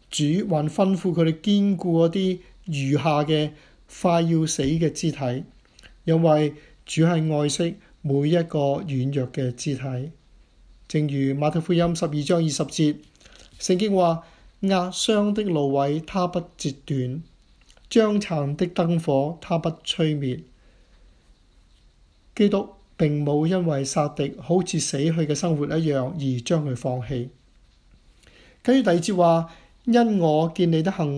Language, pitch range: Chinese, 140-175 Hz